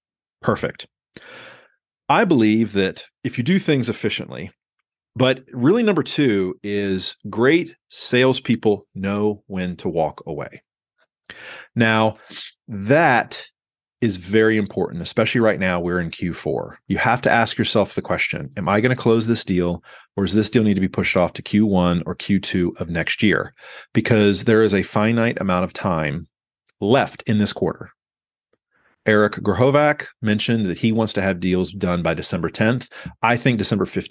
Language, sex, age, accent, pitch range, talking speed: English, male, 30-49, American, 95-125 Hz, 160 wpm